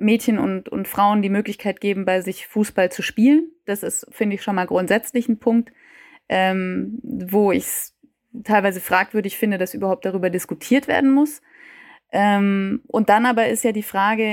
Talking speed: 175 wpm